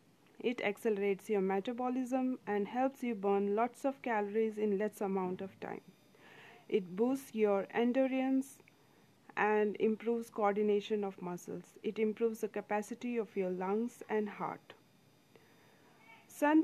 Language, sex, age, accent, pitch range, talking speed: English, female, 40-59, Indian, 205-235 Hz, 125 wpm